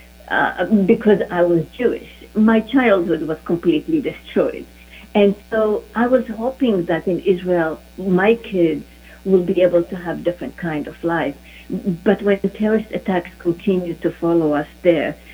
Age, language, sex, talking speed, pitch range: 50-69, English, female, 155 wpm, 170-220 Hz